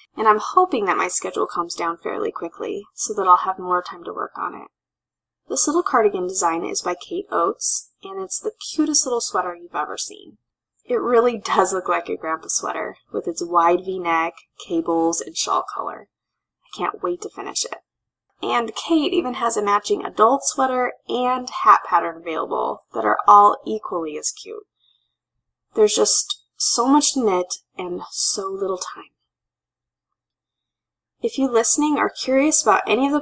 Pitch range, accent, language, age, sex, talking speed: 170-280 Hz, American, English, 20-39, female, 175 wpm